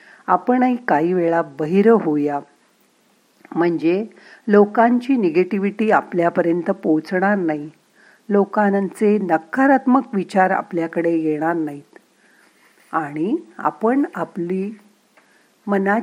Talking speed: 60 wpm